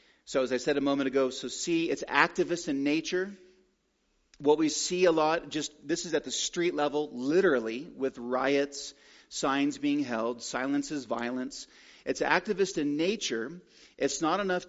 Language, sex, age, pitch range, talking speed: English, male, 40-59, 140-180 Hz, 165 wpm